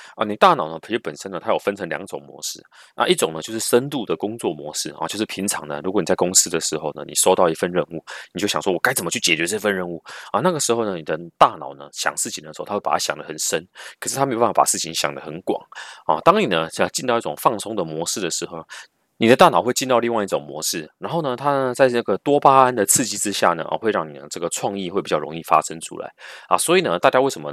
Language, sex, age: Chinese, male, 30-49